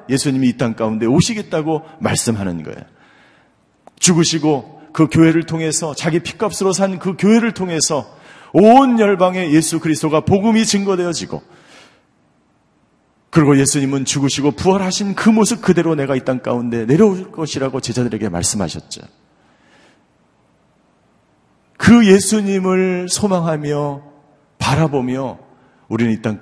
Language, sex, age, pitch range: Korean, male, 40-59, 110-165 Hz